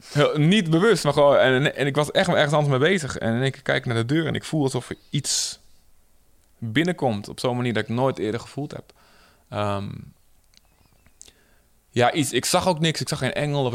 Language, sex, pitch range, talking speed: Dutch, male, 105-145 Hz, 210 wpm